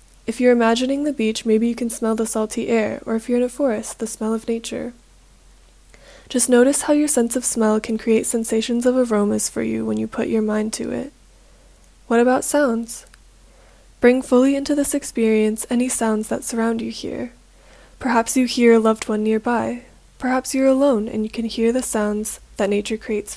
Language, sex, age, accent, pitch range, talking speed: English, female, 10-29, American, 215-250 Hz, 195 wpm